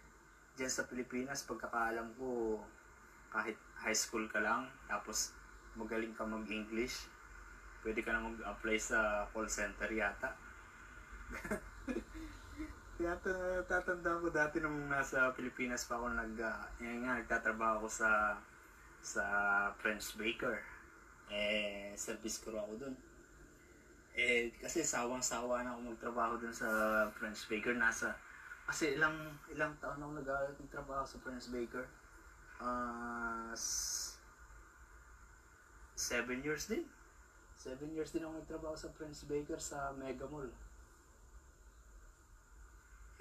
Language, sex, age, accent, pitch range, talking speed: Filipino, male, 20-39, native, 105-135 Hz, 110 wpm